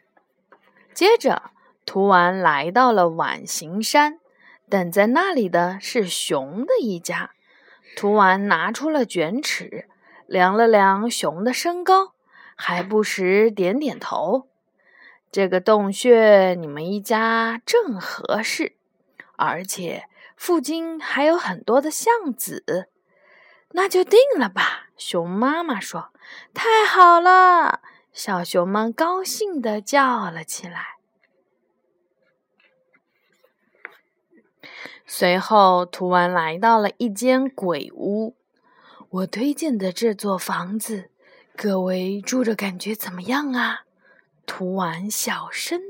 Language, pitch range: Chinese, 190-300 Hz